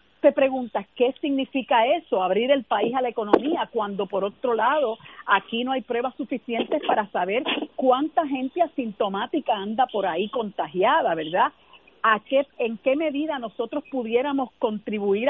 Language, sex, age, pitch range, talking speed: Spanish, female, 50-69, 215-280 Hz, 150 wpm